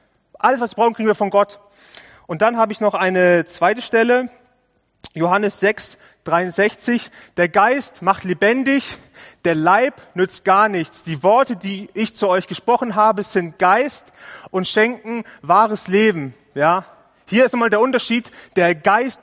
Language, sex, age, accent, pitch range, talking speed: German, male, 30-49, German, 170-220 Hz, 155 wpm